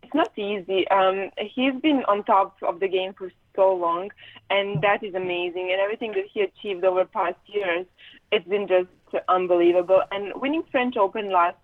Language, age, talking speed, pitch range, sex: English, 20-39, 180 wpm, 190-230 Hz, female